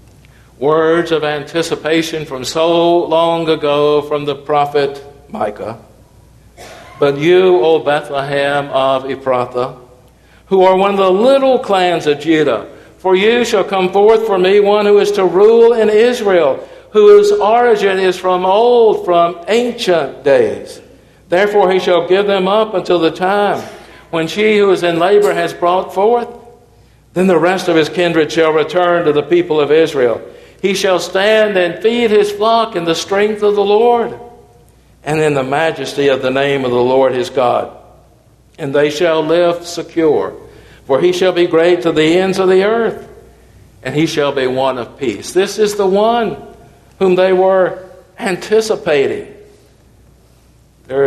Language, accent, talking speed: English, American, 160 wpm